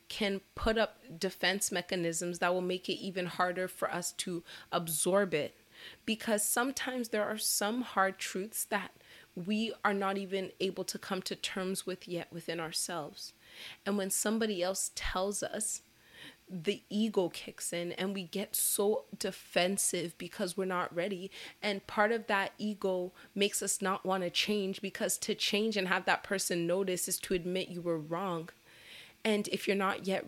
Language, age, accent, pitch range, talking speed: English, 20-39, American, 175-200 Hz, 170 wpm